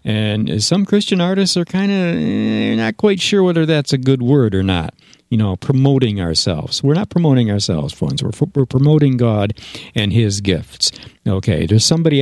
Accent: American